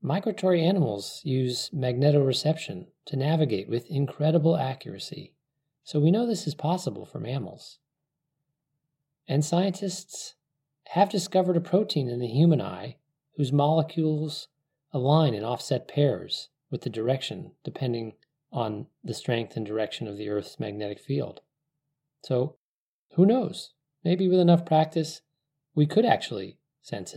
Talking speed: 130 wpm